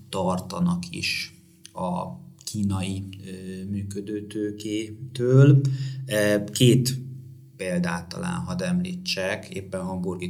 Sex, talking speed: male, 80 wpm